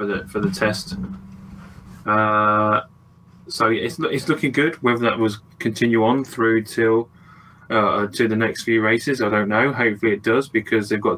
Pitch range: 105-120 Hz